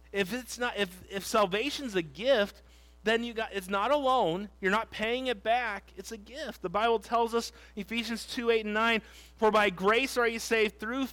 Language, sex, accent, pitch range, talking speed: English, male, American, 195-240 Hz, 210 wpm